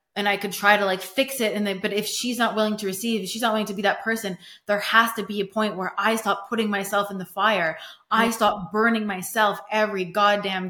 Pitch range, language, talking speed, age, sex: 195-220 Hz, English, 240 wpm, 20-39, female